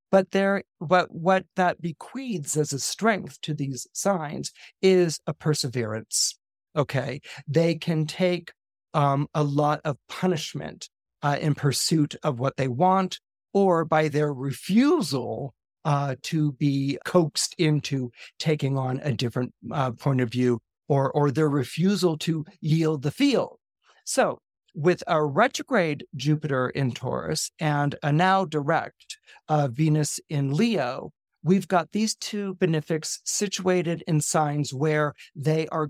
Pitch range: 140-180 Hz